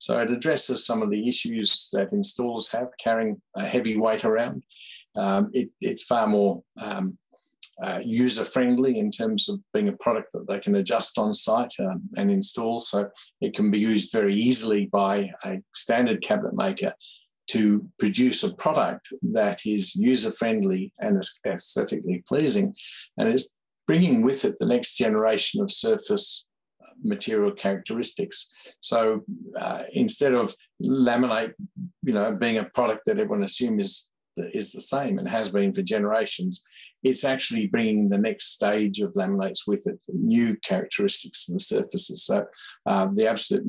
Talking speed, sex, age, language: 155 wpm, male, 50-69, English